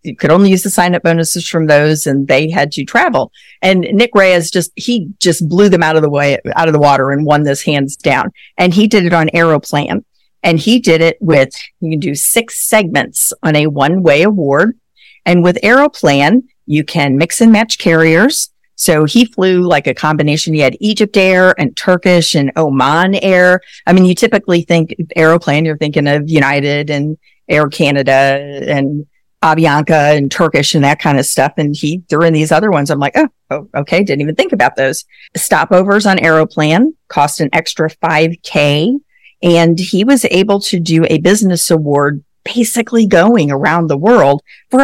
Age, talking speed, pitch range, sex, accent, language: 50-69, 190 wpm, 155-205 Hz, female, American, English